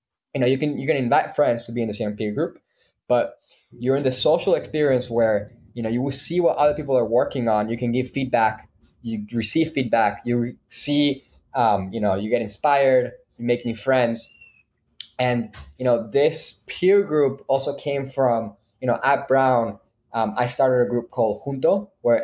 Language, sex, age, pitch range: English, male, 20-39, 110-130 Hz